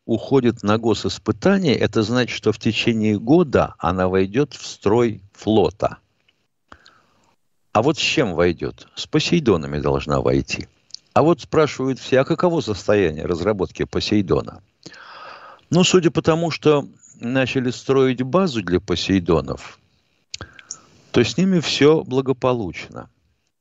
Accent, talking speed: native, 120 wpm